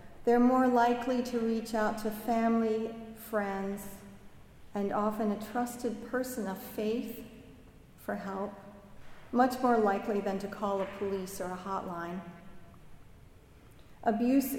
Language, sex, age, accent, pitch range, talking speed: English, female, 40-59, American, 195-230 Hz, 125 wpm